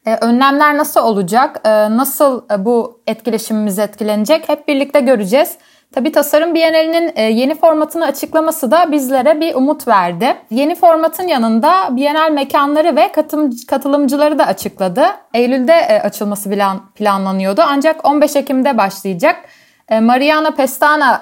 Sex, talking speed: female, 130 wpm